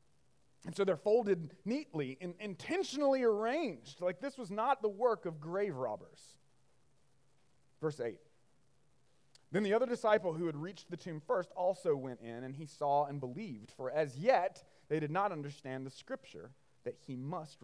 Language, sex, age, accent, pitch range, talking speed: English, male, 30-49, American, 145-240 Hz, 165 wpm